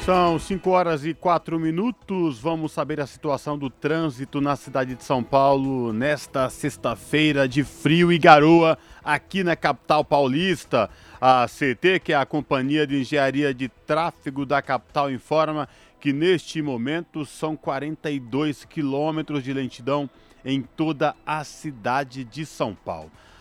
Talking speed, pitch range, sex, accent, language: 140 wpm, 125-155 Hz, male, Brazilian, Portuguese